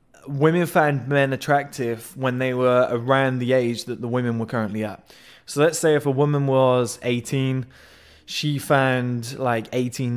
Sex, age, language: male, 20-39, English